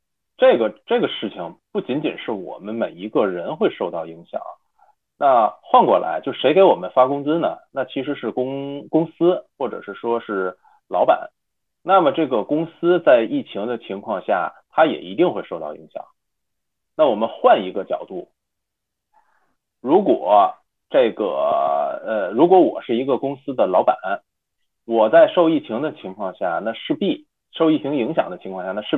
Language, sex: Chinese, male